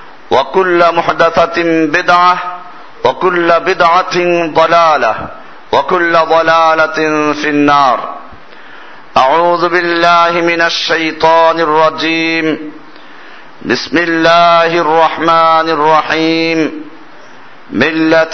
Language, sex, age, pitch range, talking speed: Bengali, male, 50-69, 160-180 Hz, 65 wpm